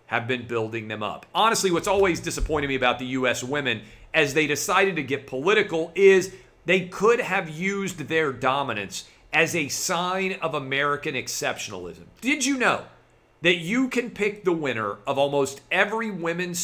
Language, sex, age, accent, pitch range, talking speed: English, male, 40-59, American, 125-175 Hz, 165 wpm